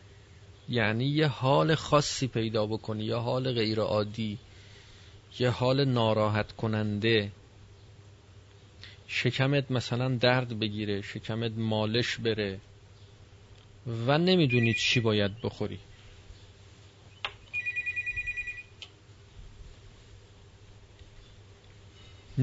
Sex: male